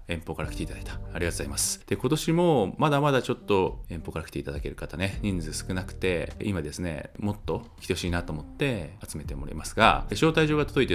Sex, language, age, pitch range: male, Japanese, 20-39, 80-105 Hz